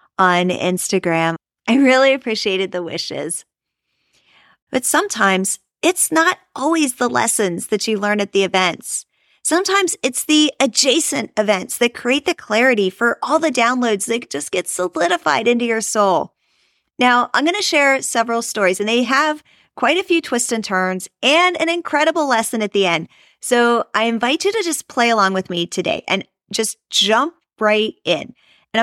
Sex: female